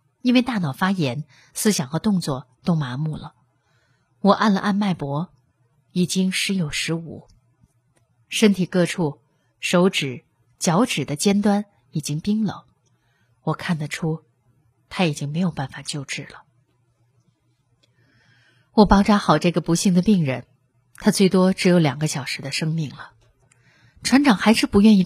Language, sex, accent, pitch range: Chinese, female, native, 130-190 Hz